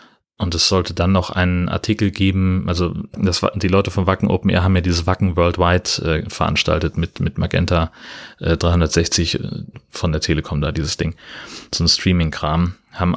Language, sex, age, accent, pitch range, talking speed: German, male, 30-49, German, 95-115 Hz, 170 wpm